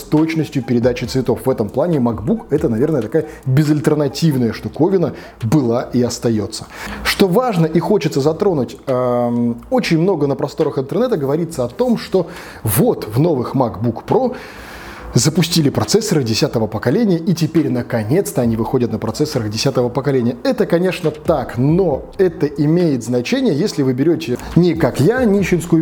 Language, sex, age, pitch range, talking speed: Russian, male, 20-39, 120-165 Hz, 145 wpm